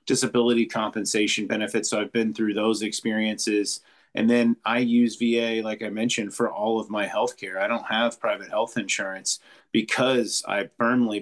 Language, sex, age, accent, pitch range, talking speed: English, male, 30-49, American, 100-120 Hz, 165 wpm